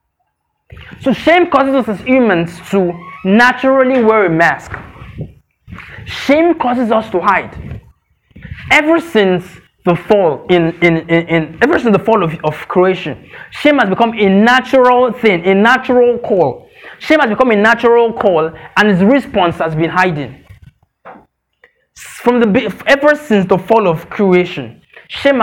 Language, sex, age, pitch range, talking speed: English, male, 20-39, 185-245 Hz, 145 wpm